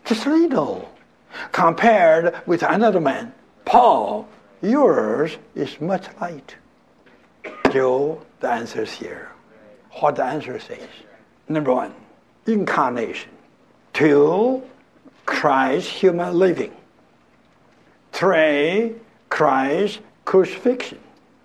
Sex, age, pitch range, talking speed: male, 60-79, 145-220 Hz, 80 wpm